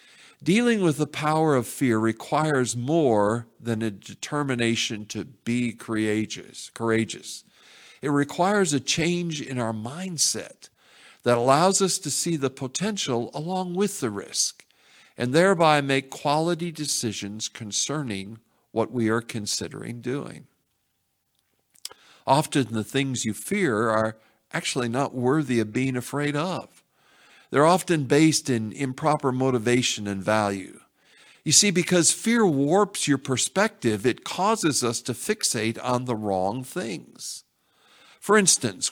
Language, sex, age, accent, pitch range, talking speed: English, male, 50-69, American, 115-160 Hz, 125 wpm